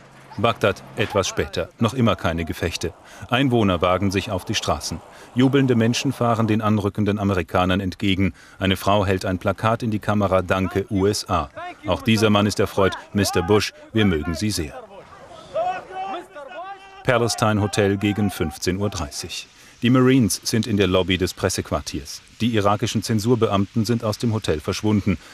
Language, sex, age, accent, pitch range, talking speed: German, male, 40-59, German, 95-110 Hz, 145 wpm